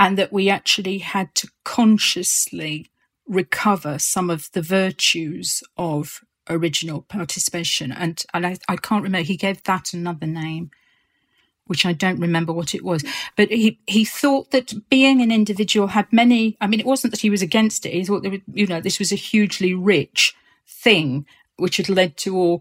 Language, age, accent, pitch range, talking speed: English, 40-59, British, 175-210 Hz, 185 wpm